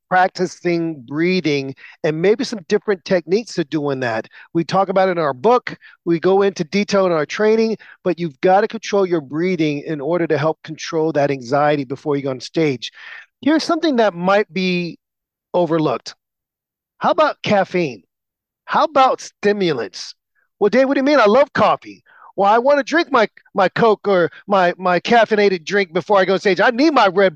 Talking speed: 190 wpm